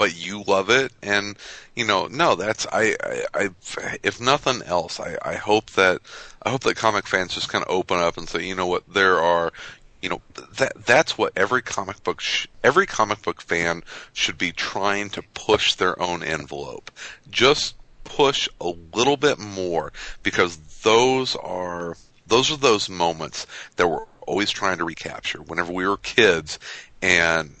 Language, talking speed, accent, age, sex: English, 175 wpm, American, 40-59, male